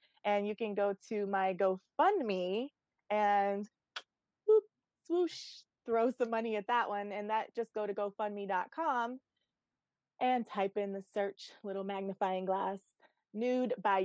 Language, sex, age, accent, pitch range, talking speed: English, female, 20-39, American, 195-240 Hz, 135 wpm